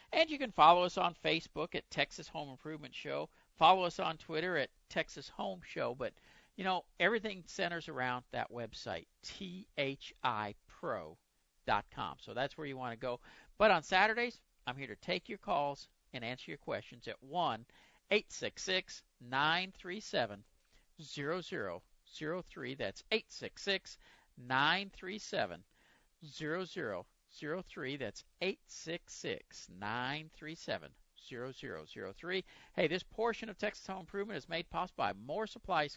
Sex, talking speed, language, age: male, 130 wpm, English, 50-69